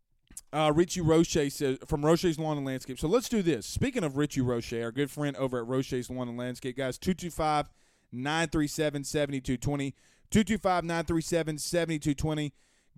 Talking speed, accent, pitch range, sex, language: 135 wpm, American, 130-165 Hz, male, English